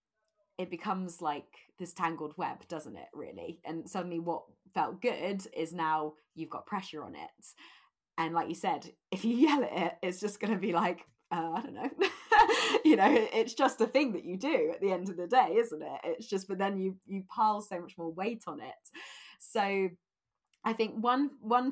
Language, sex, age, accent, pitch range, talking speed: English, female, 20-39, British, 165-220 Hz, 200 wpm